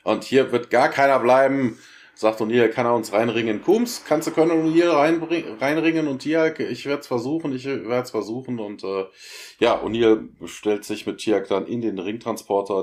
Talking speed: 180 wpm